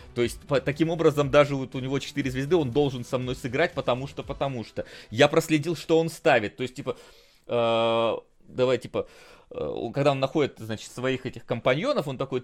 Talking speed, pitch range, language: 195 wpm, 135-165 Hz, Russian